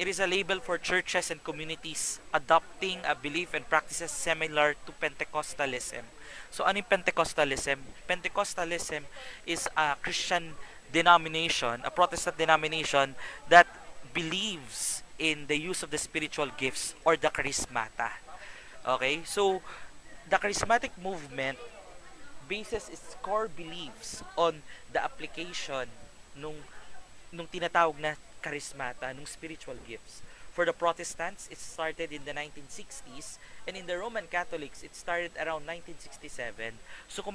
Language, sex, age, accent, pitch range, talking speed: English, male, 20-39, Filipino, 150-180 Hz, 130 wpm